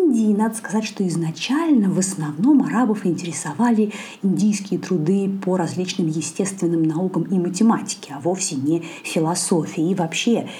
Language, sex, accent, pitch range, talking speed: Russian, female, native, 165-215 Hz, 130 wpm